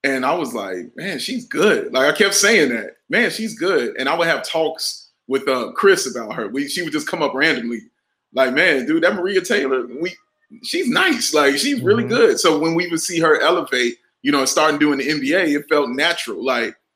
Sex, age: male, 20-39